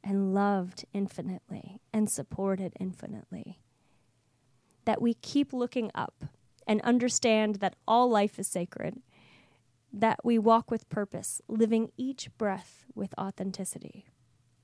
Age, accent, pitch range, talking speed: 30-49, American, 185-230 Hz, 115 wpm